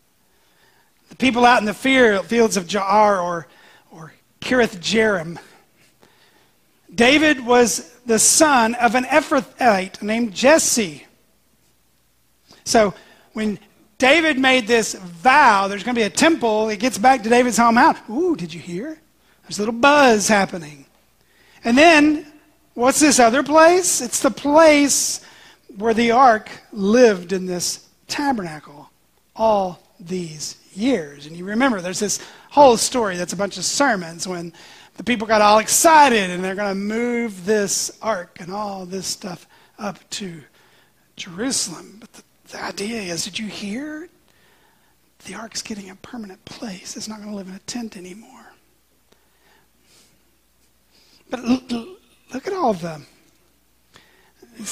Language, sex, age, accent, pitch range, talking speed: English, male, 40-59, American, 190-255 Hz, 145 wpm